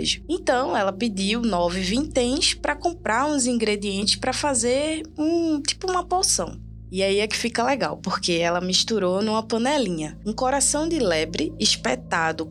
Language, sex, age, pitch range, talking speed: Portuguese, female, 20-39, 185-245 Hz, 145 wpm